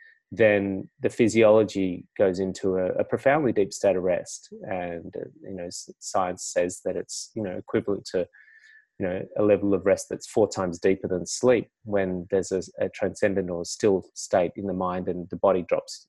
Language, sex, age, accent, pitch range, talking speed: English, male, 30-49, Australian, 95-105 Hz, 190 wpm